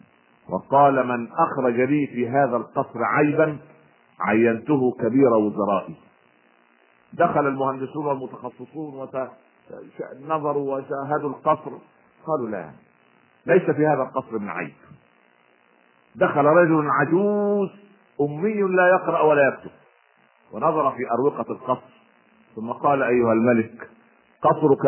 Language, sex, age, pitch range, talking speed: Arabic, male, 50-69, 85-130 Hz, 100 wpm